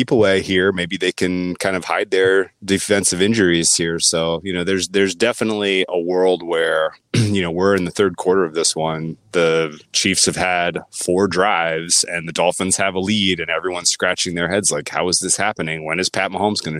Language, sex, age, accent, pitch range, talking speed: English, male, 30-49, American, 80-95 Hz, 205 wpm